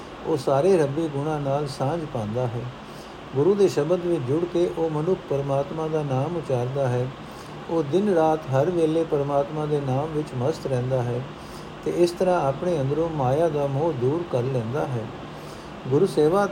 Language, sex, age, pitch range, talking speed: Punjabi, male, 60-79, 160-185 Hz, 165 wpm